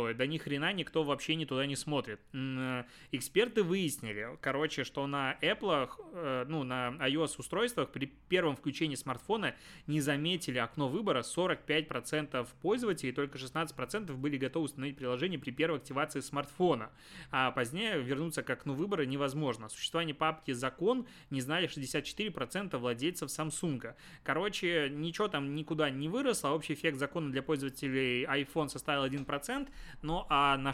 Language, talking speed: Russian, 135 wpm